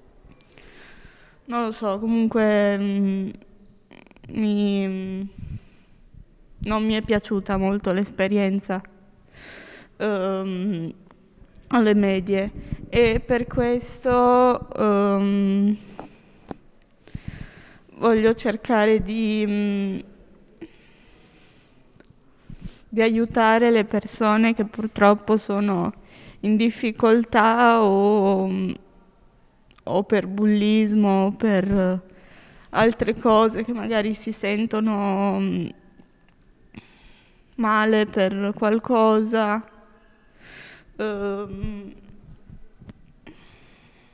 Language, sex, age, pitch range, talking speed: Italian, female, 20-39, 195-220 Hz, 60 wpm